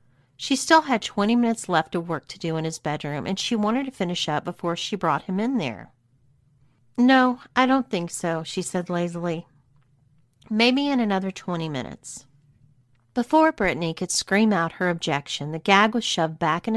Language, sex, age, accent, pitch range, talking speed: English, female, 40-59, American, 140-210 Hz, 185 wpm